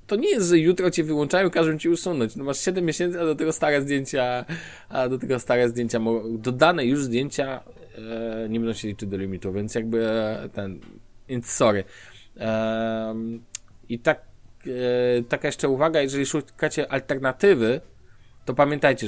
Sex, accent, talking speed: male, native, 165 wpm